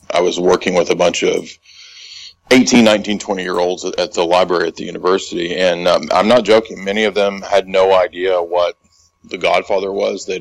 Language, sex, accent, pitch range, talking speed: English, male, American, 90-120 Hz, 185 wpm